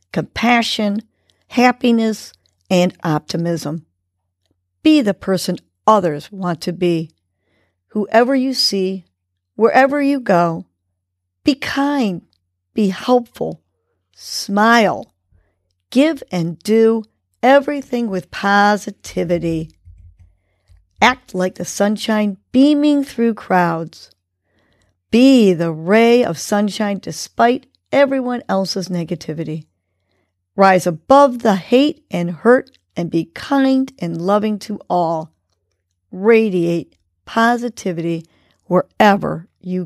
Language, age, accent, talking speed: English, 50-69, American, 90 wpm